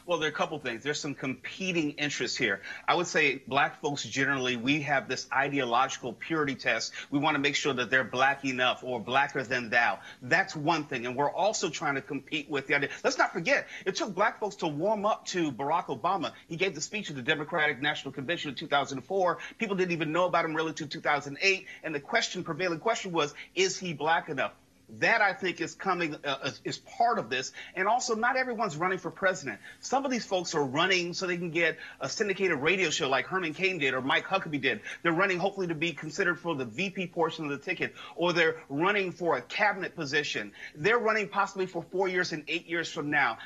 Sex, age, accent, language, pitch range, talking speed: male, 40-59, American, English, 145-185 Hz, 220 wpm